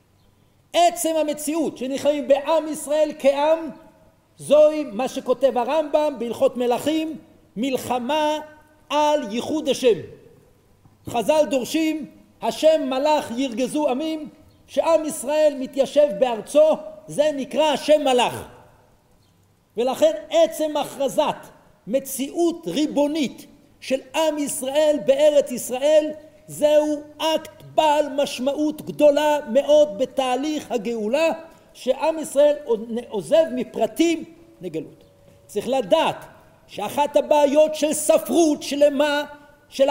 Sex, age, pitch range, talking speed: male, 50-69, 250-305 Hz, 90 wpm